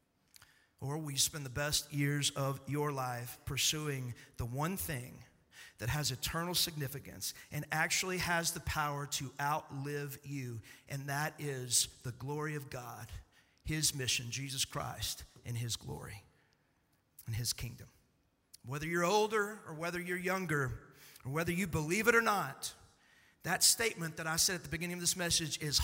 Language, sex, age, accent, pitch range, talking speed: English, male, 50-69, American, 135-195 Hz, 160 wpm